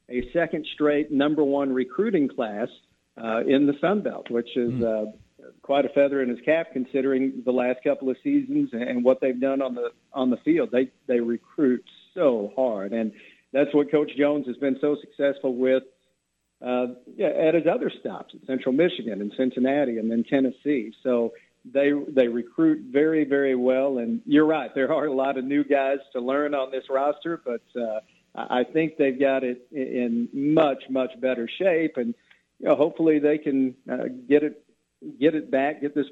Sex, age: male, 50-69